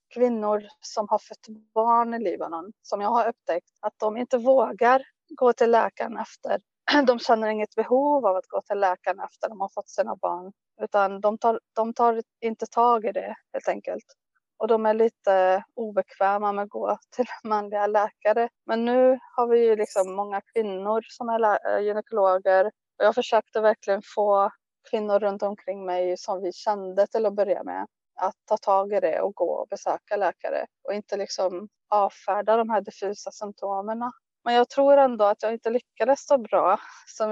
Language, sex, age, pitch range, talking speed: Swedish, female, 30-49, 205-240 Hz, 180 wpm